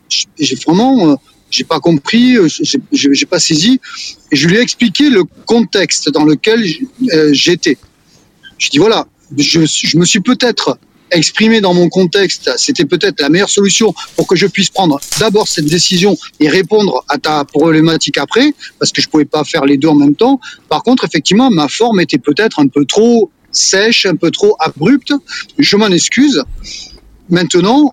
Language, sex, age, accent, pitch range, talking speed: French, male, 40-59, French, 155-225 Hz, 175 wpm